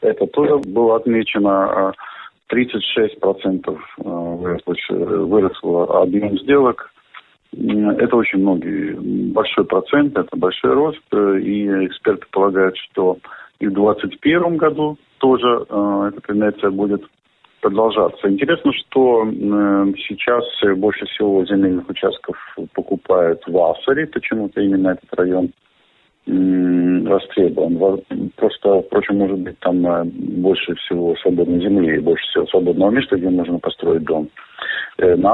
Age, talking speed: 50-69, 105 wpm